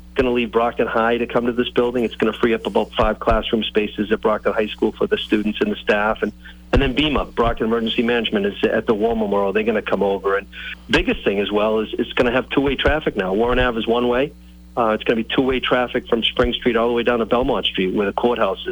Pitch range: 105-125 Hz